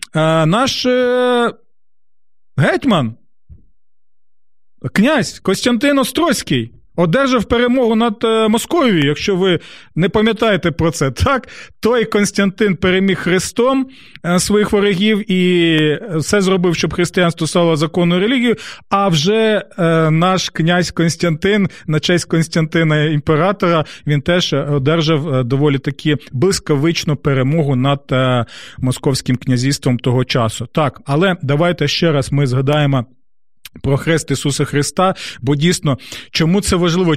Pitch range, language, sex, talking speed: 145-195 Hz, Ukrainian, male, 110 wpm